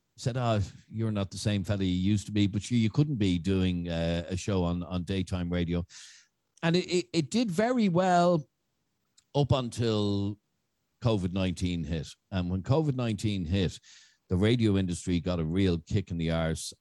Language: English